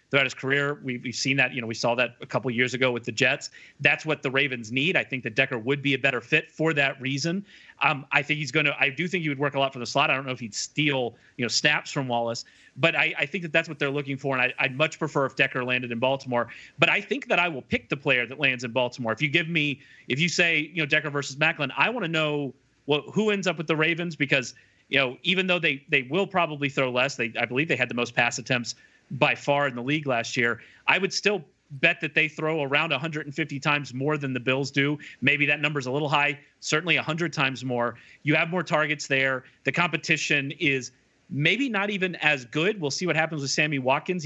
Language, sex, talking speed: English, male, 265 wpm